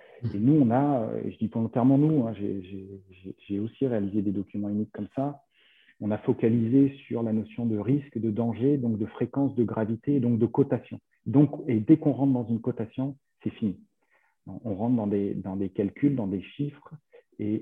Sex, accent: male, French